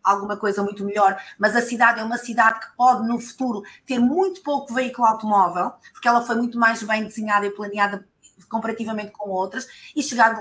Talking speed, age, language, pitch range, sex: 190 wpm, 20-39, Portuguese, 200-255 Hz, female